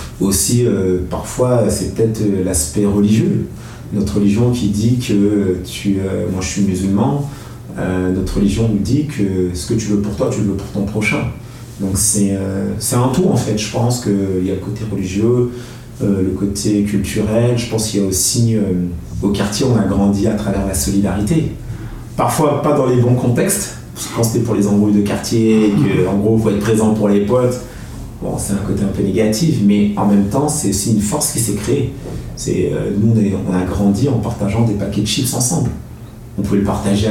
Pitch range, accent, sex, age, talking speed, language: 100-115 Hz, French, male, 30-49, 210 wpm, French